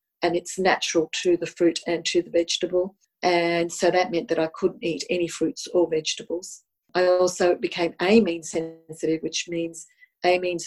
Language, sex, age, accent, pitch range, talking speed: English, female, 40-59, Australian, 165-185 Hz, 170 wpm